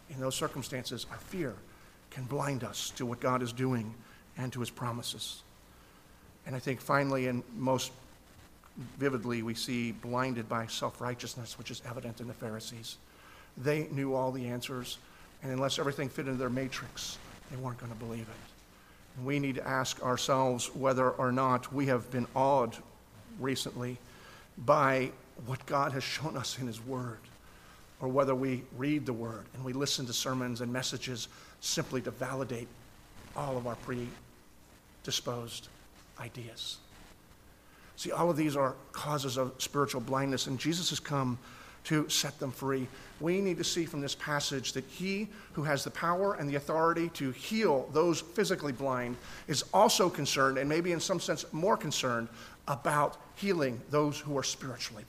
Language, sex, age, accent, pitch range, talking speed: English, male, 50-69, American, 120-140 Hz, 165 wpm